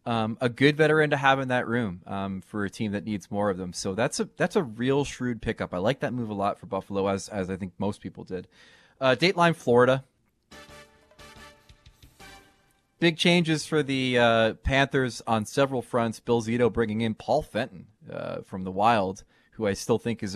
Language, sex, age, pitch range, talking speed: English, male, 30-49, 100-120 Hz, 200 wpm